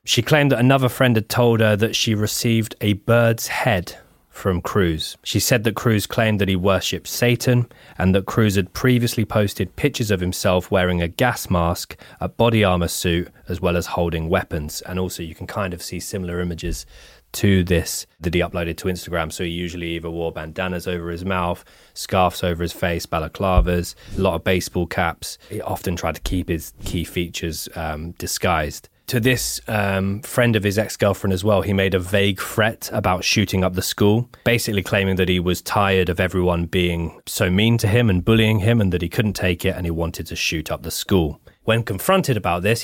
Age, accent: 20-39, British